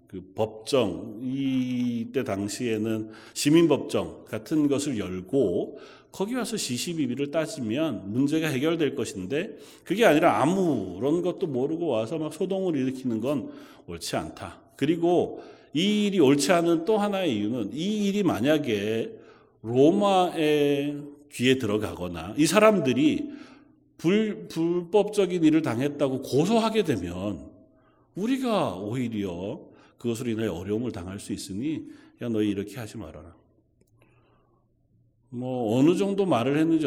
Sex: male